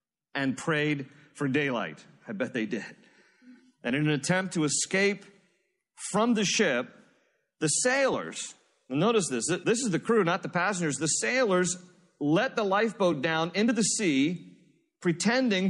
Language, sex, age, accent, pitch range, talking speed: English, male, 40-59, American, 150-205 Hz, 145 wpm